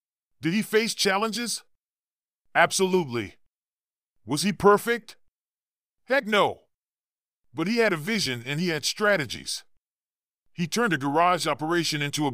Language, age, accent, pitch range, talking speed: English, 40-59, American, 150-205 Hz, 125 wpm